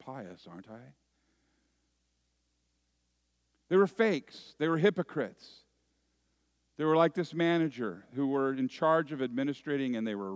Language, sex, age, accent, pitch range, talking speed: English, male, 50-69, American, 95-145 Hz, 135 wpm